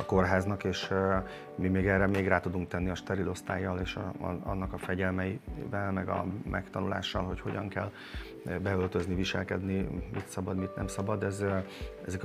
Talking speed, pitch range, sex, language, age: 155 wpm, 90-100 Hz, male, Hungarian, 30-49